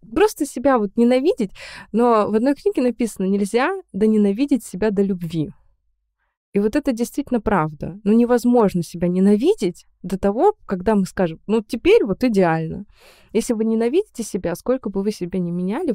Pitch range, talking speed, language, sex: 175-215 Hz, 160 wpm, Russian, female